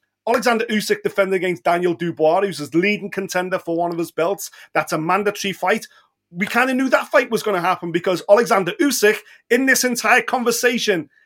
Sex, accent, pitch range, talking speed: male, British, 180-235 Hz, 190 wpm